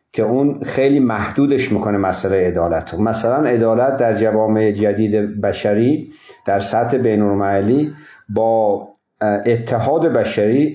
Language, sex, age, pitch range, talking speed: Persian, male, 50-69, 105-130 Hz, 105 wpm